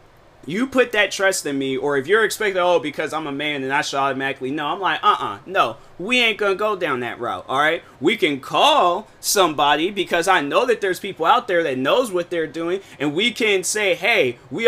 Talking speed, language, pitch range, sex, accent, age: 235 wpm, English, 145-215 Hz, male, American, 20-39